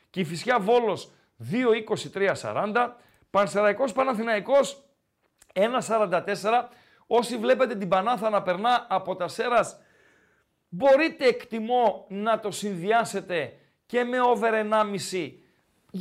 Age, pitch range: 40-59, 195-250 Hz